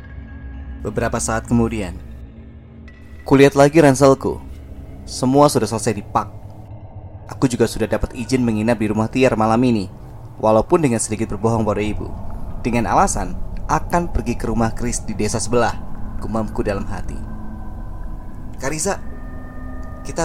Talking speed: 125 wpm